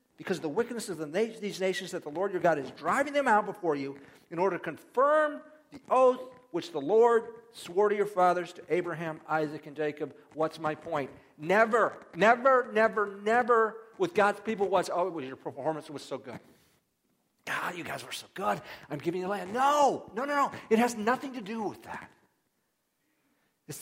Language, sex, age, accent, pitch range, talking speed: English, male, 50-69, American, 155-220 Hz, 190 wpm